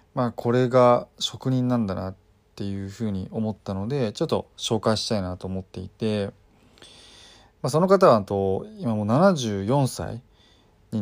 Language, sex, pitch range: Japanese, male, 100-130 Hz